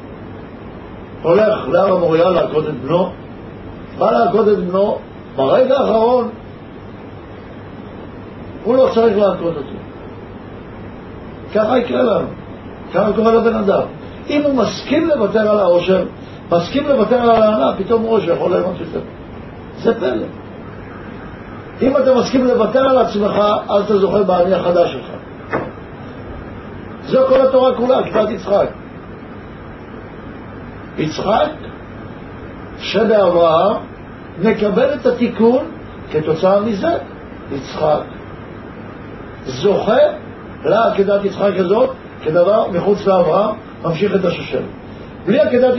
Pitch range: 165-235 Hz